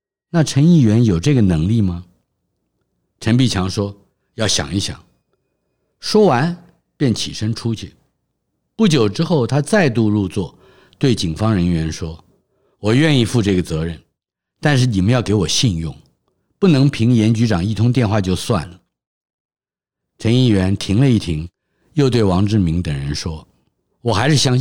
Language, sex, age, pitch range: Chinese, male, 50-69, 90-135 Hz